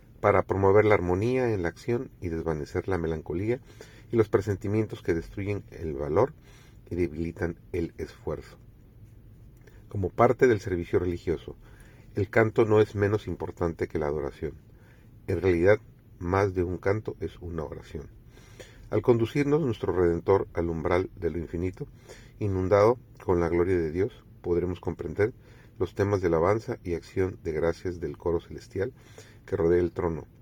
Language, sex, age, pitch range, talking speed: Spanish, male, 40-59, 90-115 Hz, 150 wpm